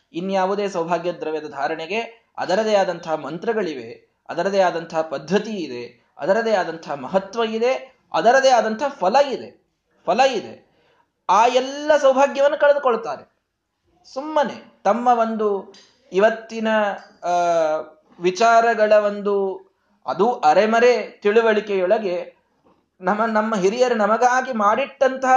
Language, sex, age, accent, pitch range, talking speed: Kannada, male, 20-39, native, 185-245 Hz, 85 wpm